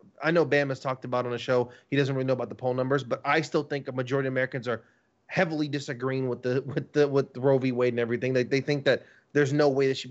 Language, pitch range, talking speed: English, 135-185 Hz, 280 wpm